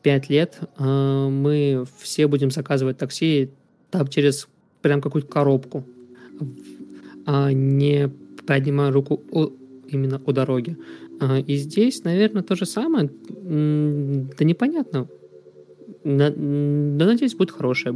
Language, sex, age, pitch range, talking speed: Russian, male, 20-39, 130-155 Hz, 100 wpm